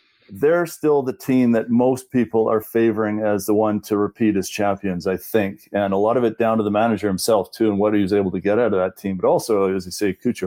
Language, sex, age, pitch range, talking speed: English, male, 40-59, 105-120 Hz, 265 wpm